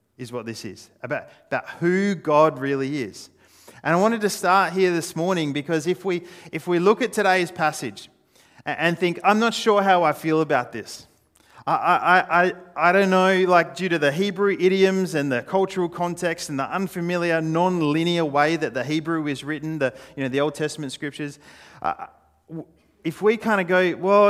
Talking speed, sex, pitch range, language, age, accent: 190 wpm, male, 125-170 Hz, English, 30-49, Australian